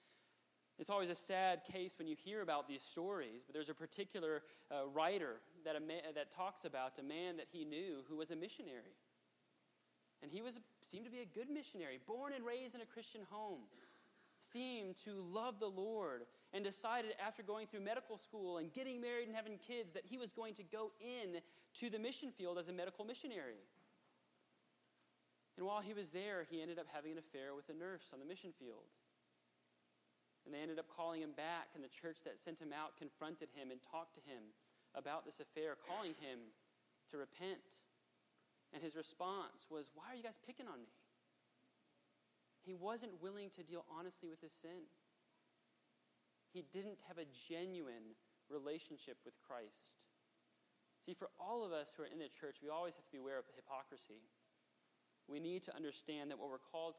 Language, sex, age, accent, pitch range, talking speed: English, male, 30-49, American, 130-195 Hz, 190 wpm